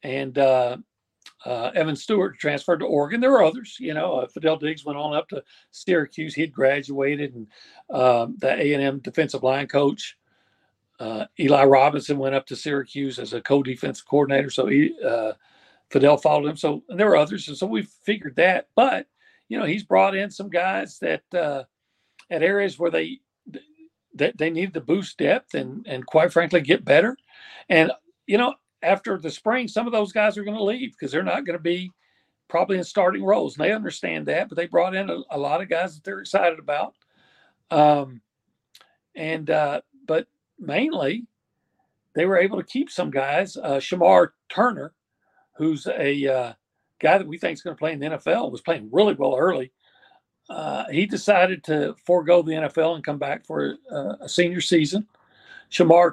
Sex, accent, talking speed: male, American, 185 wpm